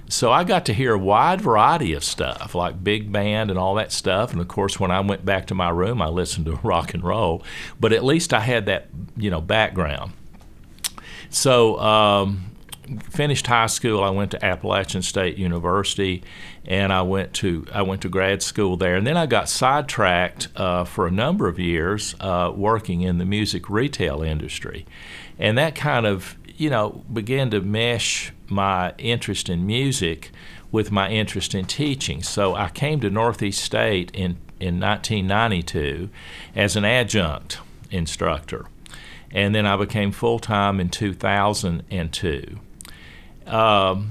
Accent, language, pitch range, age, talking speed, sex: American, English, 90-110 Hz, 50-69, 165 wpm, male